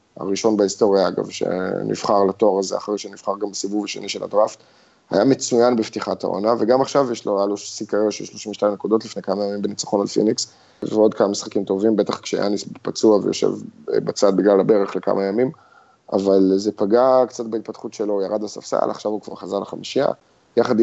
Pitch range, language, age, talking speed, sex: 105-125 Hz, Hebrew, 20-39, 175 wpm, male